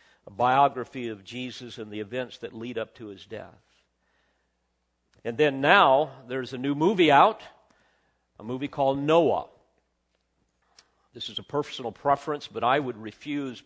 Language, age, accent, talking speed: English, 50-69, American, 150 wpm